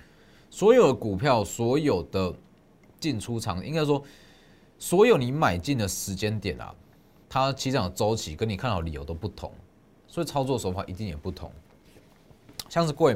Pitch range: 90-140 Hz